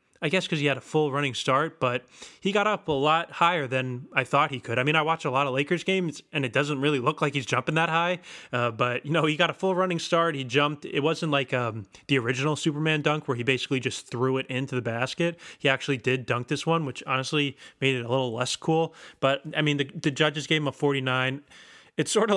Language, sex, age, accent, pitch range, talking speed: English, male, 20-39, American, 130-155 Hz, 260 wpm